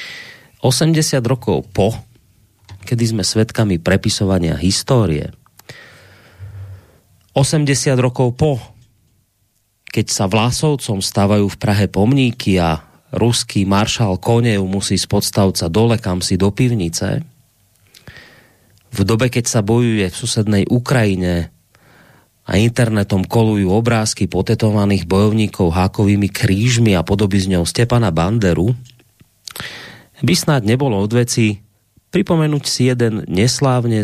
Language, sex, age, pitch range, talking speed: Slovak, male, 30-49, 95-120 Hz, 100 wpm